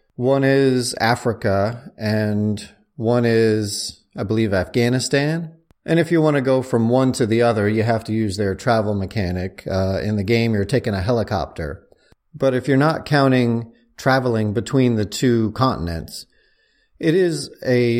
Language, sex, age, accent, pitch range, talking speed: English, male, 40-59, American, 105-135 Hz, 160 wpm